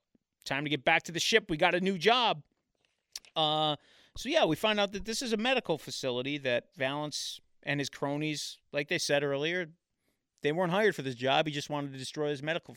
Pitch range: 130-165 Hz